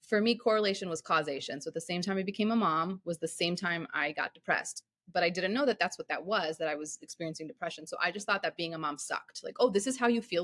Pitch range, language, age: 165-220 Hz, English, 30-49